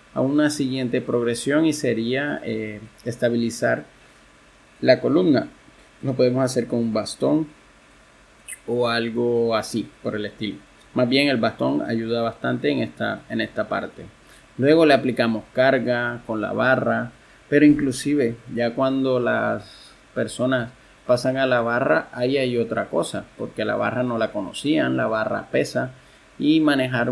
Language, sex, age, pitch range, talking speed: Spanish, male, 30-49, 115-130 Hz, 140 wpm